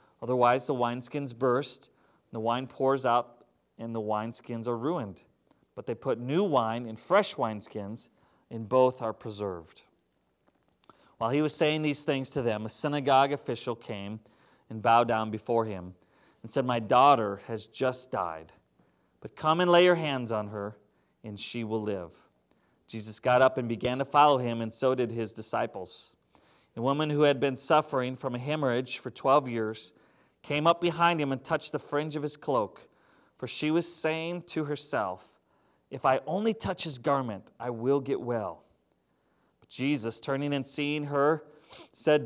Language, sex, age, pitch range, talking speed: English, male, 30-49, 115-150 Hz, 170 wpm